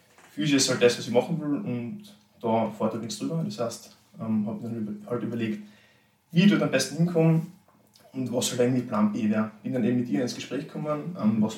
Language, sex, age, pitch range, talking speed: German, male, 20-39, 115-165 Hz, 230 wpm